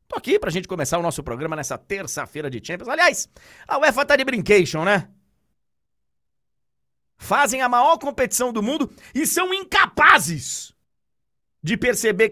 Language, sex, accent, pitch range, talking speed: Portuguese, male, Brazilian, 130-195 Hz, 145 wpm